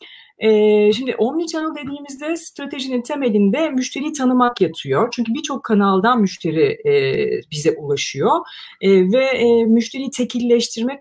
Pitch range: 190-265 Hz